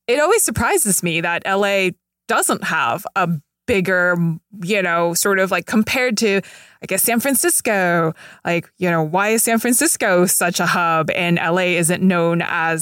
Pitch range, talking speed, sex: 170-210 Hz, 170 wpm, female